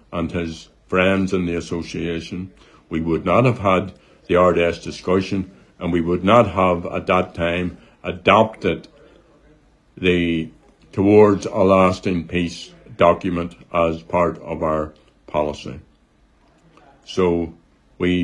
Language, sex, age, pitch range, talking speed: English, male, 60-79, 85-110 Hz, 120 wpm